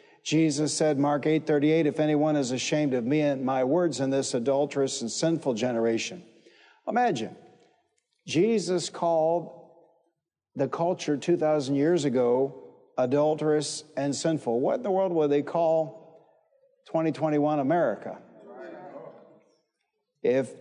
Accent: American